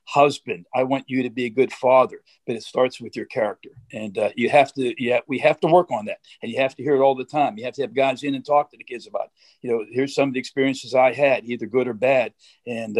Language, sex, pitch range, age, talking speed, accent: English, male, 130-150 Hz, 50-69, 285 wpm, American